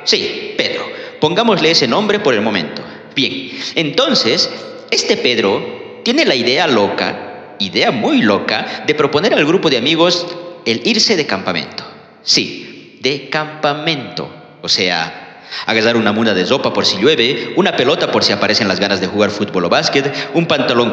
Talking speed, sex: 160 wpm, male